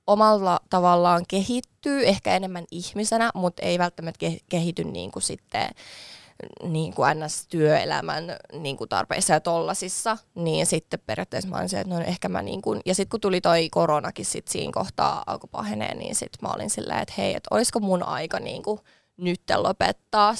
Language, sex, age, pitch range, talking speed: Finnish, female, 20-39, 170-195 Hz, 150 wpm